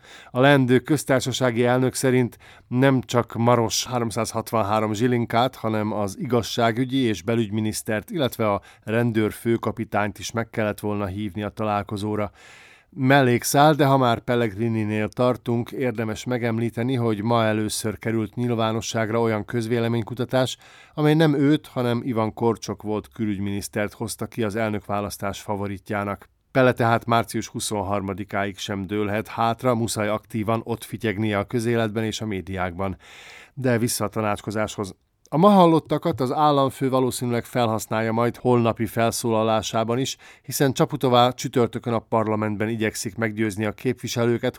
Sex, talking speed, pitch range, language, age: male, 130 wpm, 105-120 Hz, Hungarian, 50-69